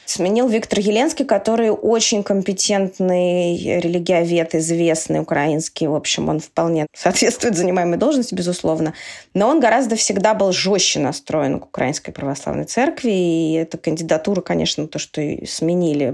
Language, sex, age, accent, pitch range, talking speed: Russian, female, 20-39, native, 170-220 Hz, 130 wpm